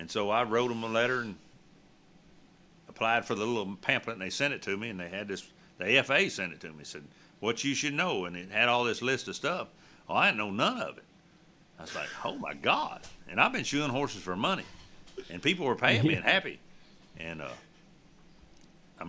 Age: 60-79